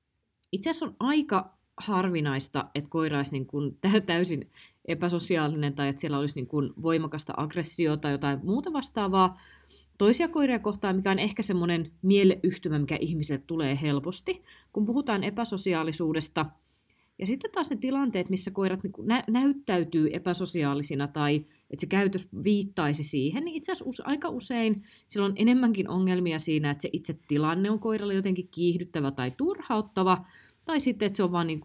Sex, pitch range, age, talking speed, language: female, 150-200 Hz, 20-39, 145 wpm, Finnish